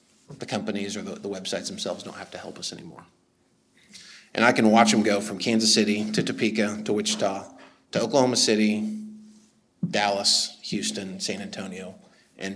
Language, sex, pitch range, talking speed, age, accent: English, male, 105-135 Hz, 160 wpm, 30-49, American